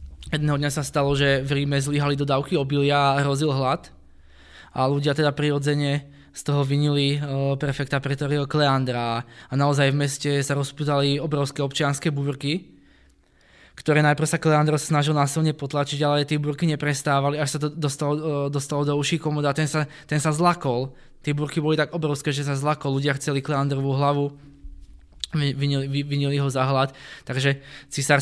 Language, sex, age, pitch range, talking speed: Czech, male, 20-39, 130-145 Hz, 170 wpm